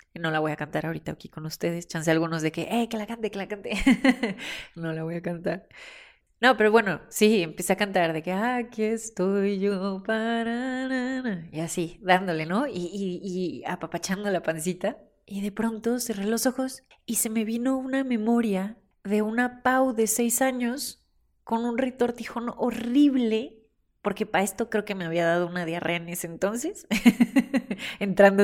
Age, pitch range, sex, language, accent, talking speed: 30-49, 180-235 Hz, female, Spanish, Mexican, 180 wpm